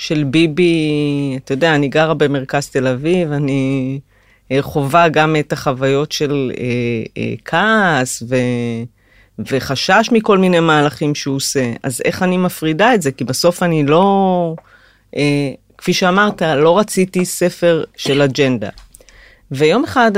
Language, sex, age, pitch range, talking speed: Hebrew, female, 40-59, 135-170 Hz, 135 wpm